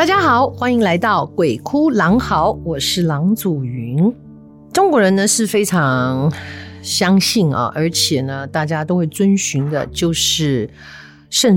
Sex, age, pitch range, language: female, 50-69, 145-195 Hz, Chinese